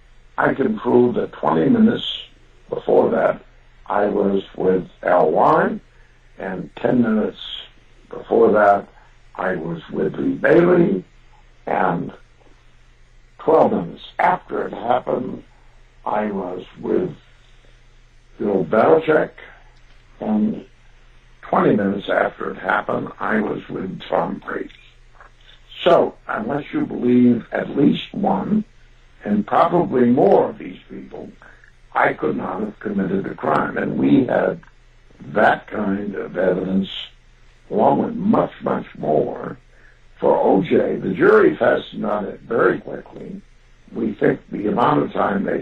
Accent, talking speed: American, 120 wpm